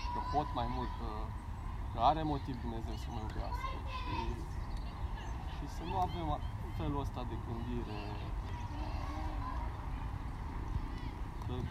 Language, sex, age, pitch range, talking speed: Romanian, male, 20-39, 100-120 Hz, 100 wpm